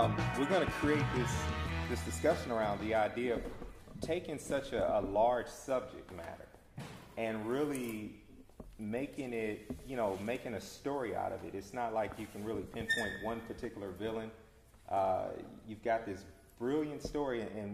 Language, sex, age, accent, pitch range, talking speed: English, male, 30-49, American, 95-110 Hz, 160 wpm